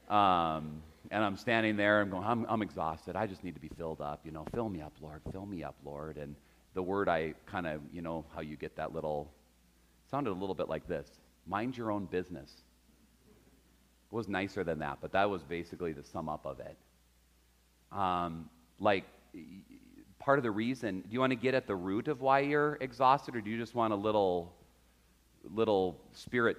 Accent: American